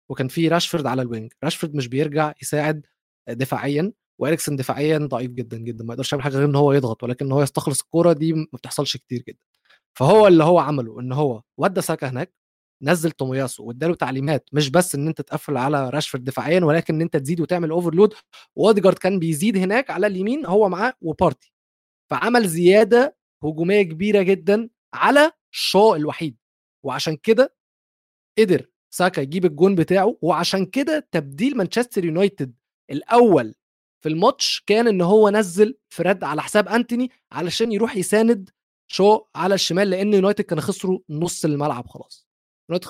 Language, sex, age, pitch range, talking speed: Arabic, male, 20-39, 145-195 Hz, 160 wpm